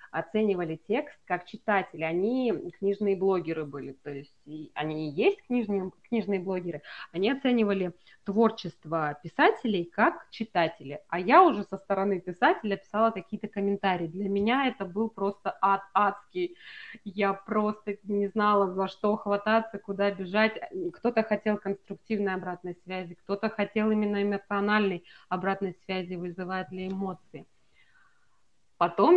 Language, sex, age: Russian, female, 20-39